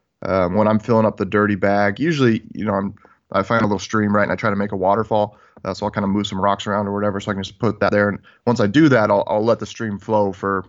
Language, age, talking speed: English, 20-39, 310 wpm